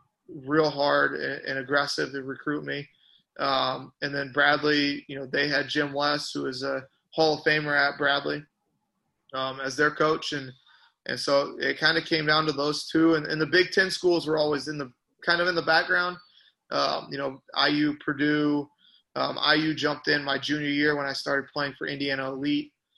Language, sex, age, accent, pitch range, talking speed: English, male, 30-49, American, 140-155 Hz, 195 wpm